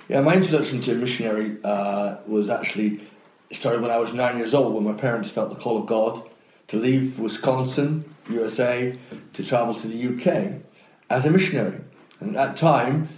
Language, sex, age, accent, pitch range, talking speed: English, male, 30-49, British, 115-140 Hz, 180 wpm